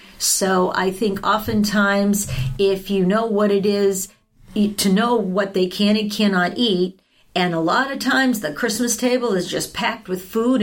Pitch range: 185-220 Hz